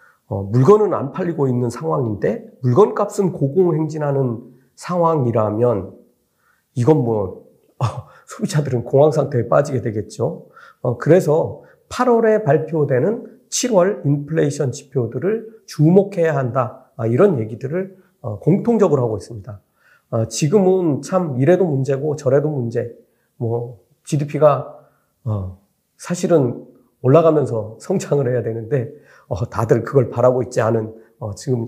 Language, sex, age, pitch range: Korean, male, 40-59, 125-180 Hz